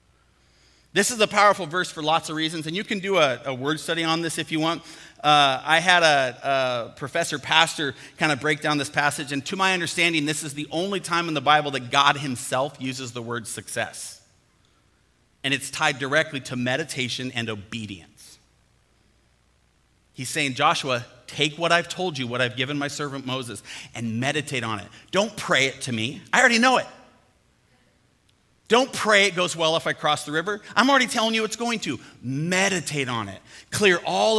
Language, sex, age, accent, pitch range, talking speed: English, male, 30-49, American, 130-175 Hz, 190 wpm